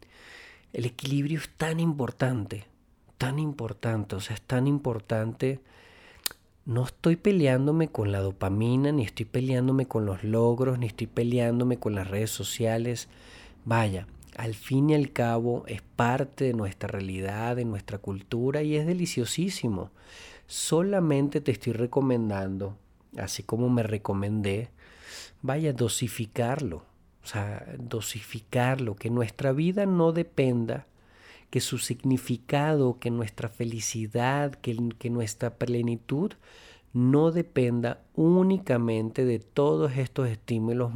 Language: Spanish